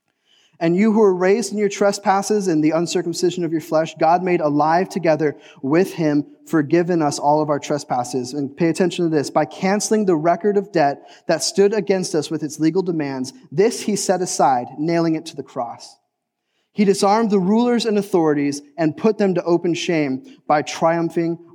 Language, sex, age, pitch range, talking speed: English, male, 20-39, 165-205 Hz, 190 wpm